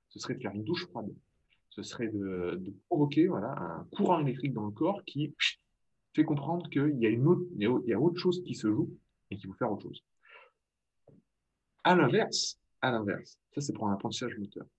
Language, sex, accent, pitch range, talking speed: French, male, French, 100-145 Hz, 205 wpm